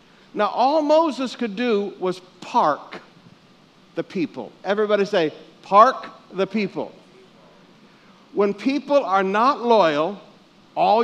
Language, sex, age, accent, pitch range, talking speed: English, male, 60-79, American, 185-235 Hz, 110 wpm